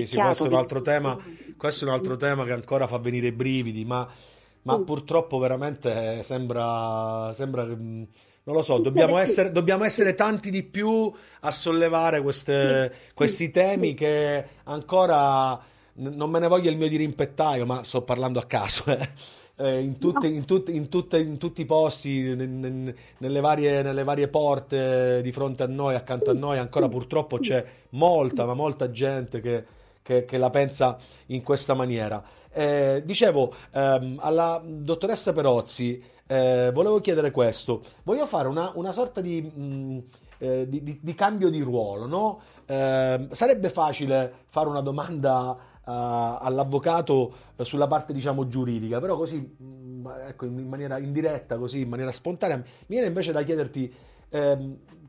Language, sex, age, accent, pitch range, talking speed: Italian, male, 30-49, native, 125-155 Hz, 150 wpm